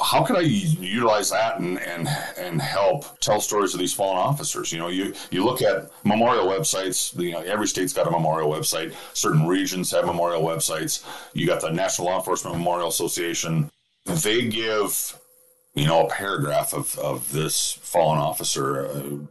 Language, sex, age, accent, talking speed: English, male, 40-59, American, 175 wpm